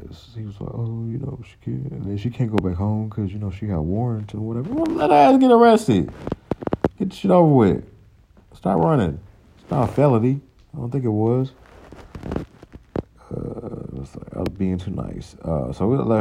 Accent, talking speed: American, 205 wpm